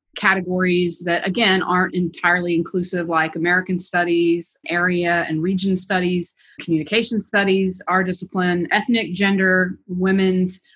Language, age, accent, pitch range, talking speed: English, 30-49, American, 170-195 Hz, 110 wpm